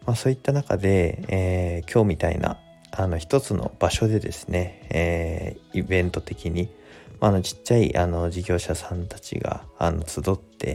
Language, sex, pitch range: Japanese, male, 85-105 Hz